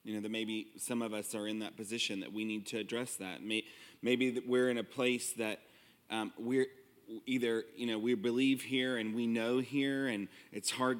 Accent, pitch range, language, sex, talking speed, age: American, 120-155 Hz, English, male, 205 wpm, 30-49